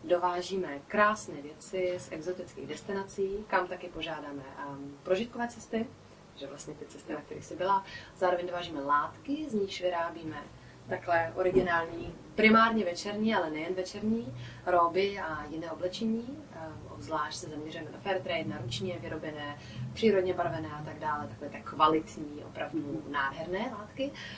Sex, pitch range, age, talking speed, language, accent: female, 155-195 Hz, 30-49, 140 wpm, Czech, native